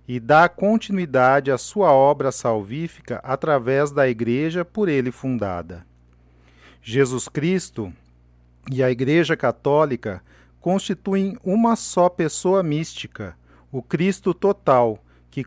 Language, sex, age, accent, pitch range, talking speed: Portuguese, male, 40-59, Brazilian, 105-170 Hz, 110 wpm